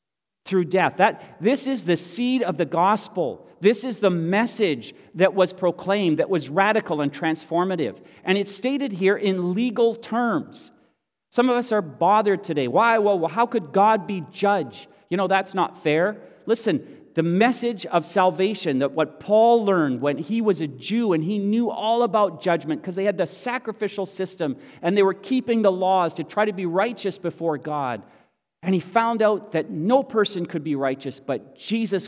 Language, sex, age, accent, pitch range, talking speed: English, male, 40-59, American, 170-230 Hz, 180 wpm